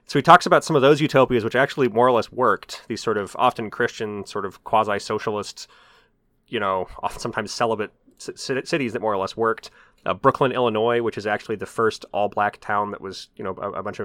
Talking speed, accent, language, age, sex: 210 wpm, American, English, 30-49, male